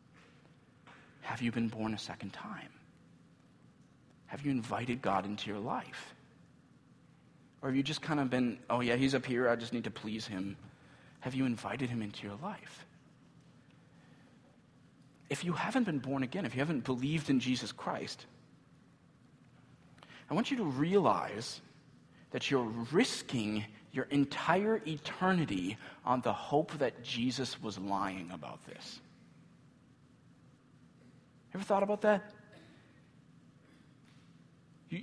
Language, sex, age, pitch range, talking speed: English, male, 40-59, 115-160 Hz, 130 wpm